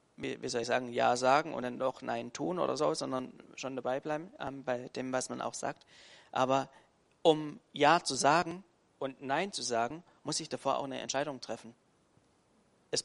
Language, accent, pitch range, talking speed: German, German, 125-150 Hz, 195 wpm